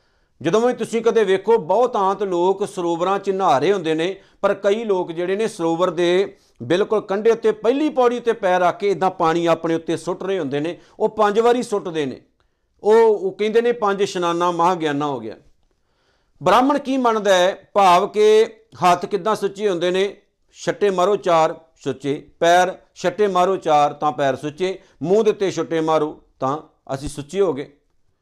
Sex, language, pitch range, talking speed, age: male, Punjabi, 175-215 Hz, 175 wpm, 50-69